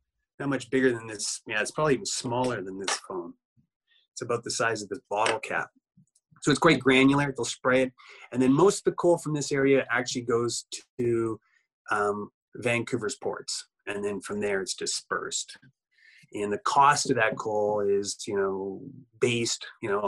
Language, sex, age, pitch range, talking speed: English, male, 30-49, 110-140 Hz, 180 wpm